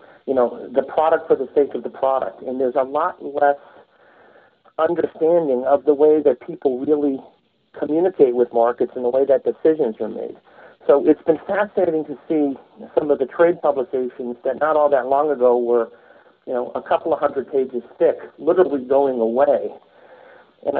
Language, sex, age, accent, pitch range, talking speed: English, male, 50-69, American, 130-160 Hz, 180 wpm